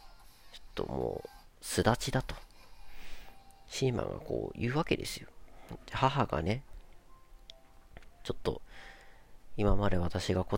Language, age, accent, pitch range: Japanese, 40-59, native, 85-120 Hz